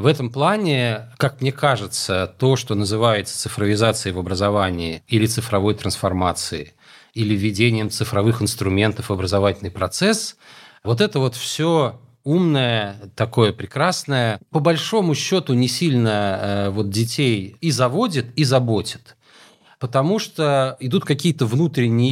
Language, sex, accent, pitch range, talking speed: Russian, male, native, 110-145 Hz, 120 wpm